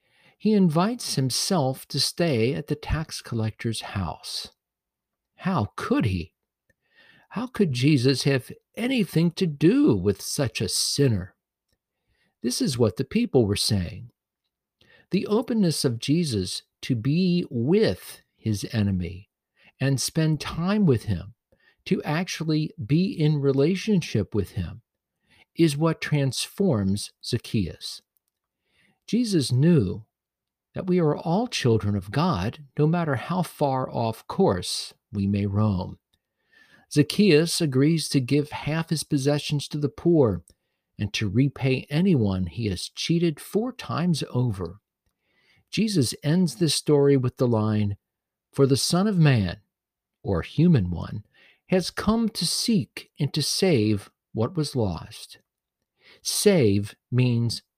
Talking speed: 125 wpm